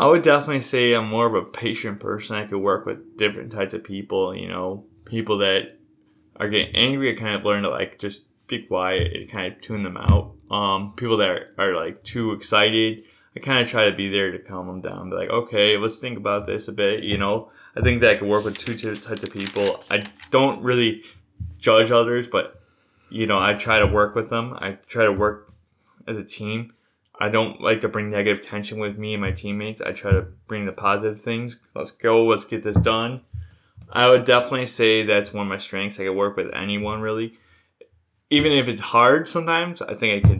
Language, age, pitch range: English, 20-39, 100-110 Hz